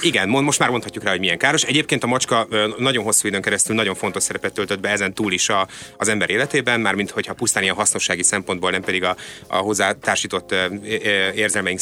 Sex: male